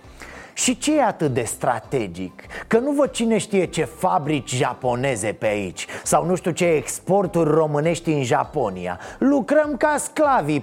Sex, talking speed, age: male, 150 wpm, 30-49